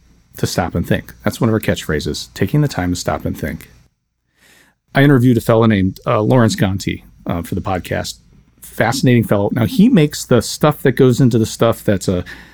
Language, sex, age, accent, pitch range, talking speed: English, male, 40-59, American, 100-130 Hz, 200 wpm